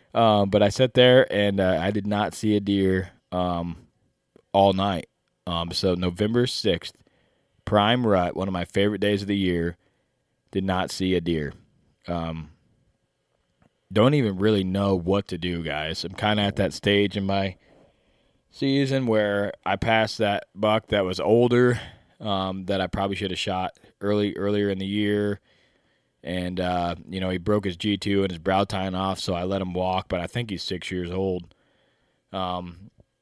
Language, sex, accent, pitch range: English, male, American, 95-110 Hz